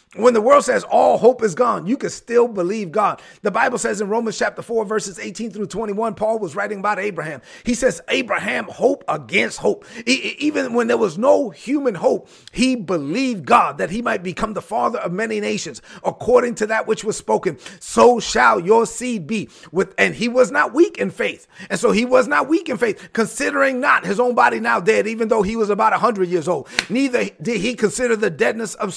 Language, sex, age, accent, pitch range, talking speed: English, male, 30-49, American, 210-250 Hz, 215 wpm